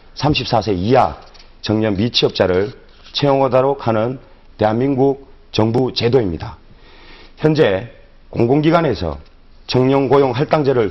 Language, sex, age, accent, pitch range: Korean, male, 40-59, native, 105-140 Hz